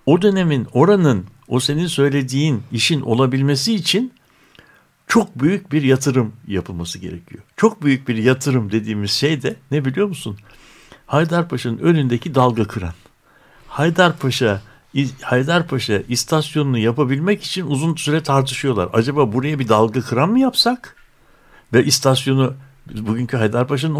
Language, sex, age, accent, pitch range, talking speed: Turkish, male, 60-79, native, 120-160 Hz, 120 wpm